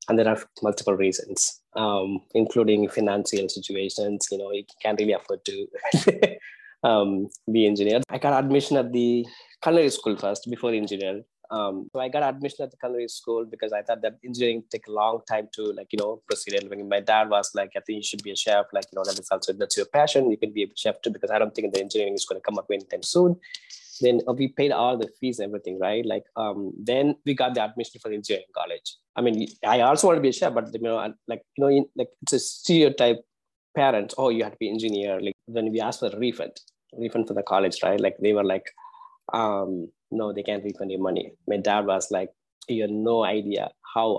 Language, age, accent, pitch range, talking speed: English, 20-39, Indian, 100-135 Hz, 230 wpm